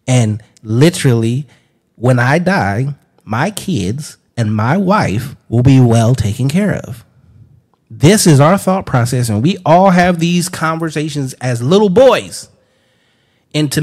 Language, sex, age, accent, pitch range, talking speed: English, male, 30-49, American, 130-195 Hz, 135 wpm